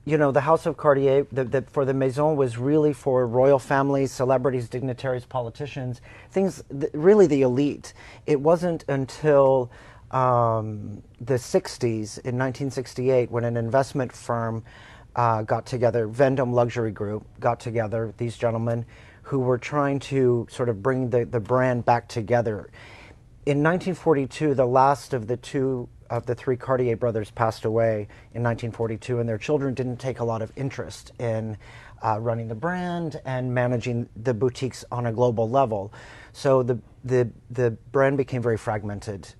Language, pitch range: English, 115-130 Hz